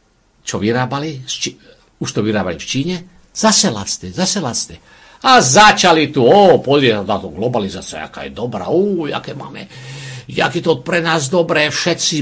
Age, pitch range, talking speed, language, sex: 60-79, 125-175 Hz, 150 wpm, Czech, male